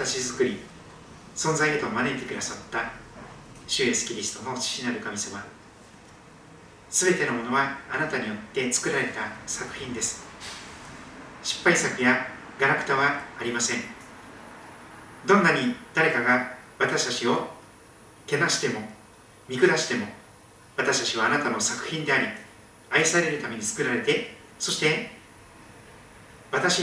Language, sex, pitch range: Japanese, male, 115-150 Hz